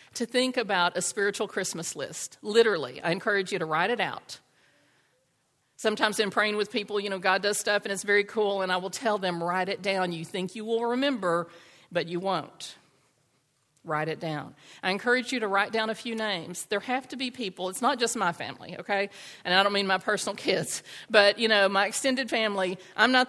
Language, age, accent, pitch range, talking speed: English, 50-69, American, 175-215 Hz, 215 wpm